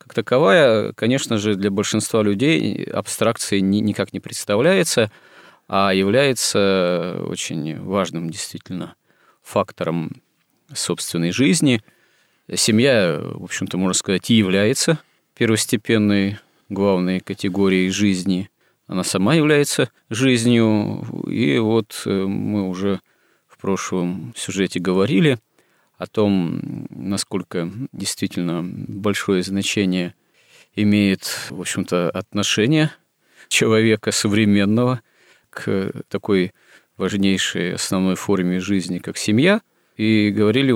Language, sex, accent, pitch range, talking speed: Russian, male, native, 95-110 Hz, 90 wpm